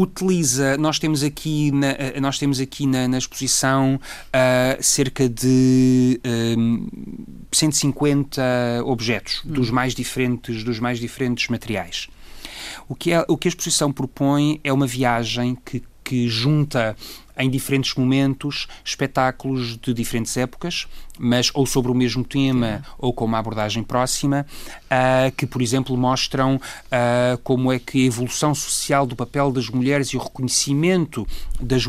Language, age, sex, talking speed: Portuguese, 30-49, male, 145 wpm